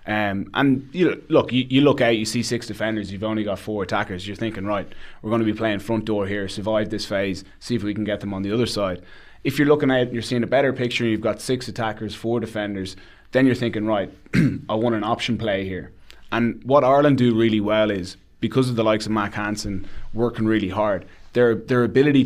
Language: English